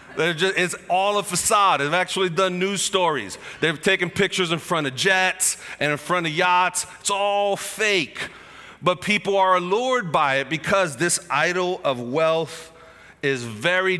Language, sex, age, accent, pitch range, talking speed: English, male, 40-59, American, 155-200 Hz, 165 wpm